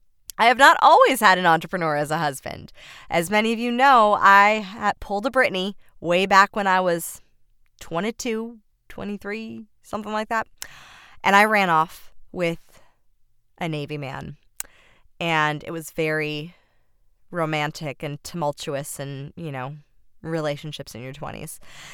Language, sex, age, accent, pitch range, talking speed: English, female, 20-39, American, 150-200 Hz, 140 wpm